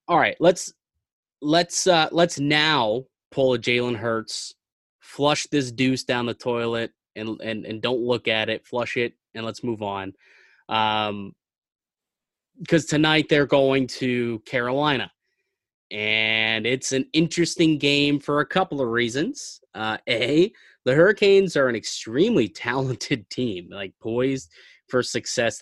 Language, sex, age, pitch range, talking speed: English, male, 20-39, 110-140 Hz, 140 wpm